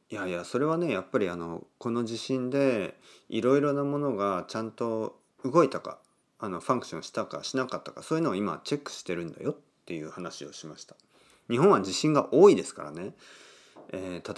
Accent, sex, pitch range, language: native, male, 80-135 Hz, Japanese